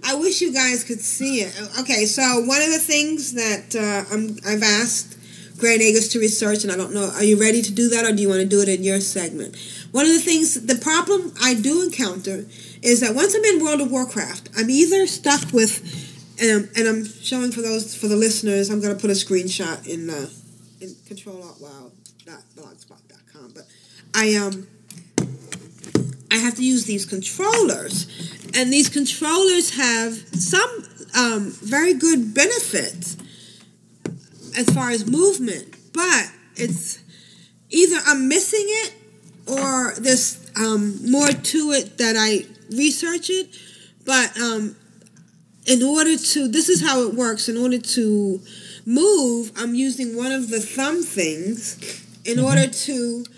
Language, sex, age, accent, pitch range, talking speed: English, female, 40-59, American, 205-280 Hz, 165 wpm